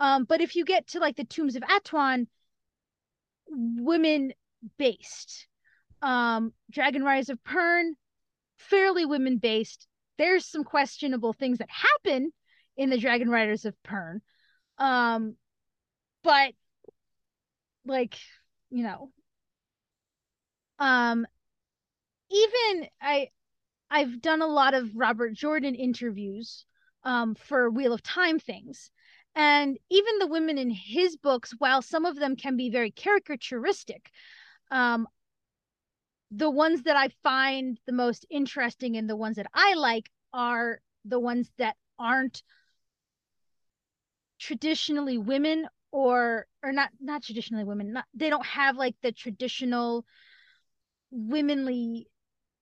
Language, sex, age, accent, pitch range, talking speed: English, female, 20-39, American, 235-310 Hz, 115 wpm